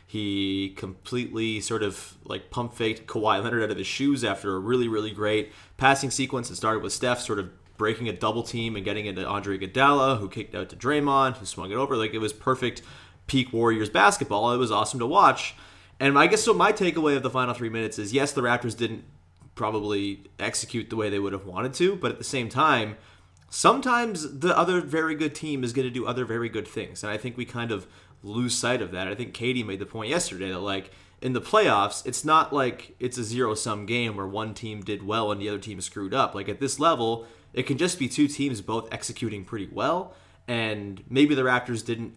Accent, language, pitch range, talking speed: American, English, 100-130 Hz, 225 wpm